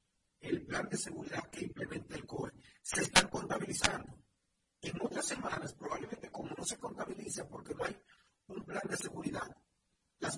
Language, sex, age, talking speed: Spanish, male, 50-69, 155 wpm